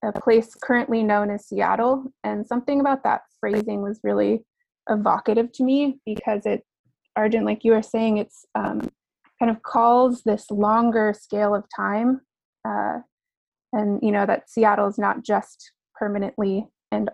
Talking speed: 150 wpm